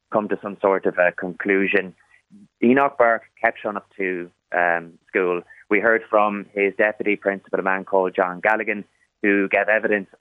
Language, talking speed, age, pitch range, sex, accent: English, 170 wpm, 20-39, 95-110 Hz, male, Irish